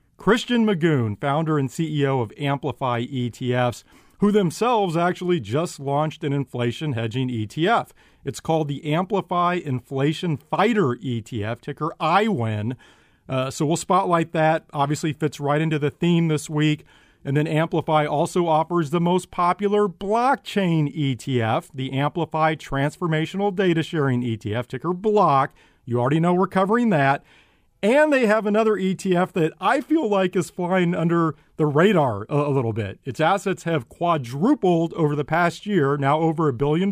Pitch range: 140-185 Hz